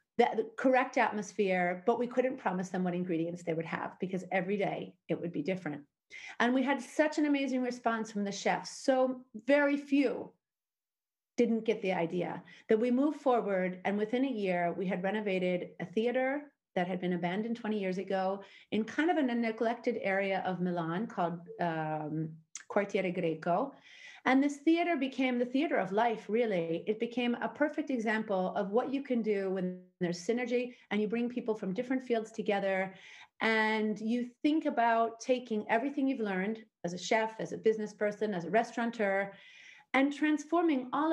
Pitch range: 190-250 Hz